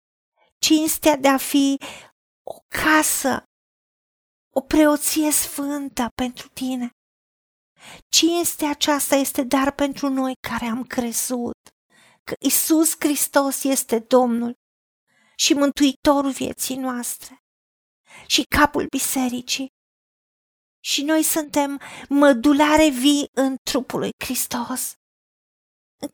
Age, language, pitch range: 40-59, Romanian, 260-305 Hz